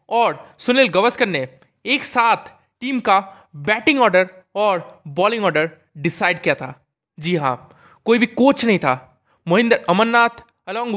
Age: 20-39